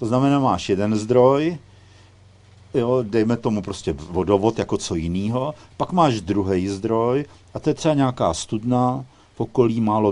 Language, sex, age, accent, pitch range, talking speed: Czech, male, 50-69, native, 100-130 Hz, 150 wpm